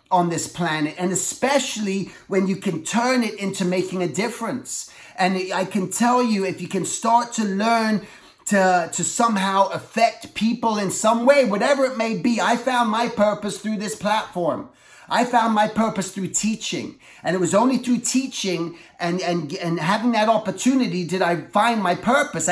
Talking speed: 175 wpm